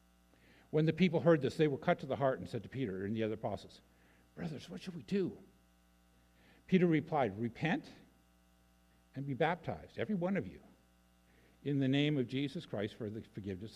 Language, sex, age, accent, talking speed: English, male, 60-79, American, 190 wpm